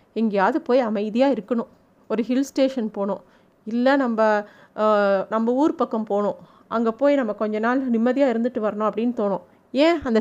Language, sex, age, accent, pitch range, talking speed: Tamil, female, 30-49, native, 225-275 Hz, 155 wpm